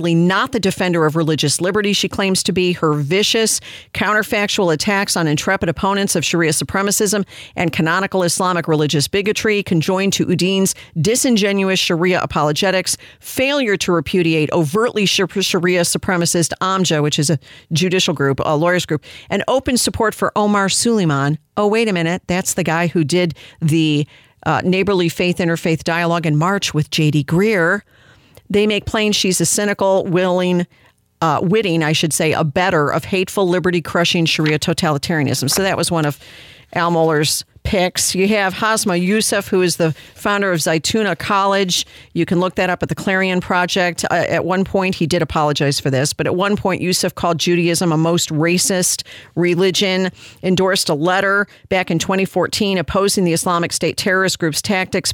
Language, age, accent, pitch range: English, 50-69, American, 165-195 Hz